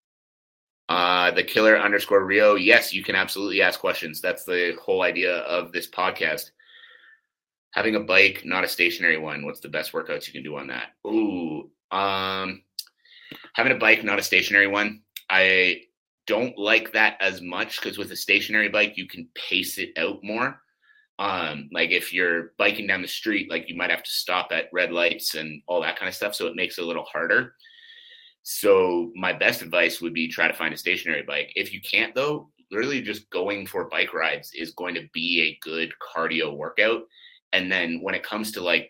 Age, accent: 30-49, American